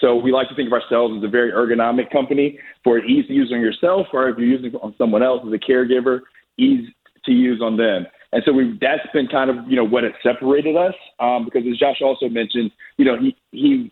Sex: male